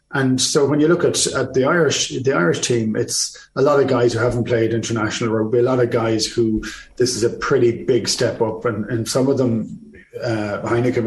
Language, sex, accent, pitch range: English, male, Irish, 120-145 Hz